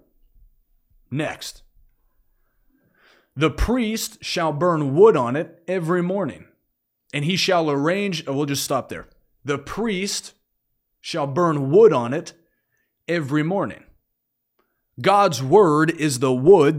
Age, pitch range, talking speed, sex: 30-49, 130-180 Hz, 115 wpm, male